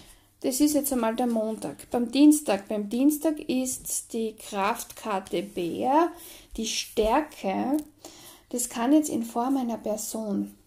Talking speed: 130 wpm